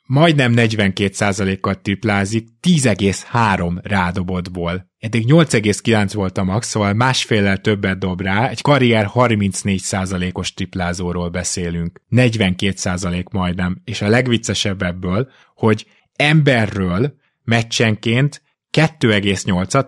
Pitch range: 95-115 Hz